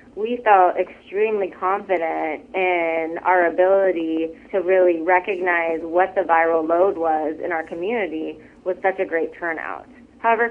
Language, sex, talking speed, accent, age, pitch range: English, female, 135 wpm, American, 20-39, 170-215 Hz